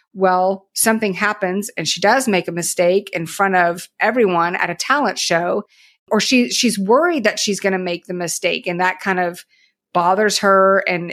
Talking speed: 185 wpm